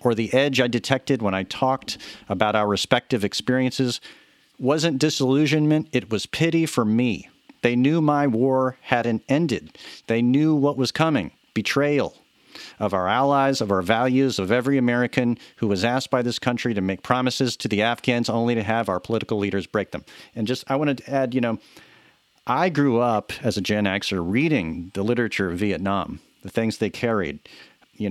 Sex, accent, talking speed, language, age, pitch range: male, American, 180 wpm, English, 40-59, 105-135 Hz